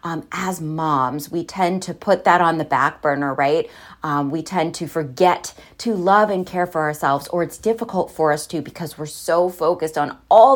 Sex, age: female, 30-49